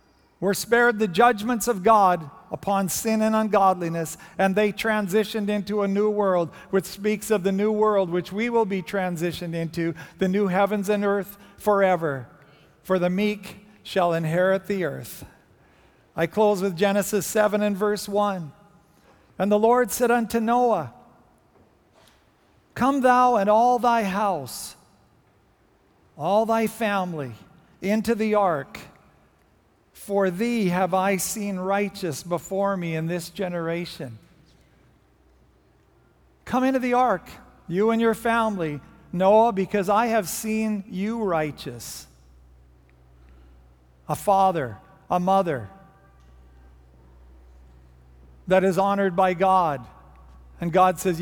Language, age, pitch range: English, 50-69, 160-210 Hz